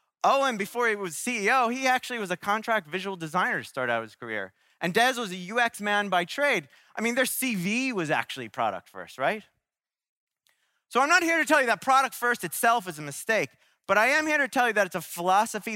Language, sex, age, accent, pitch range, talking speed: English, male, 20-39, American, 180-255 Hz, 230 wpm